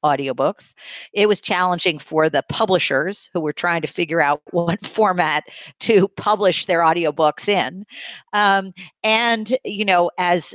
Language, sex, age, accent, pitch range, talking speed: English, female, 50-69, American, 155-195 Hz, 140 wpm